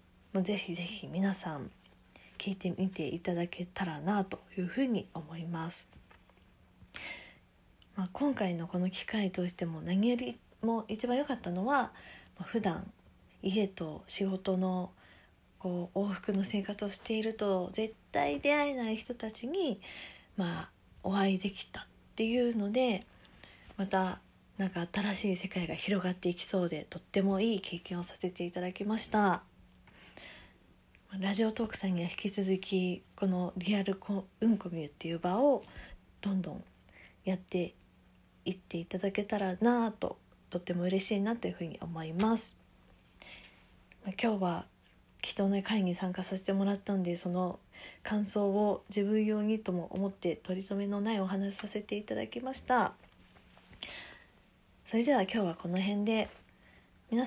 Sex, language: female, Japanese